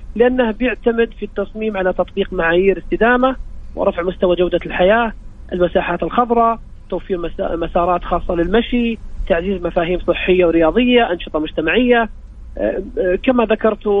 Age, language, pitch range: 30-49, English, 180-215 Hz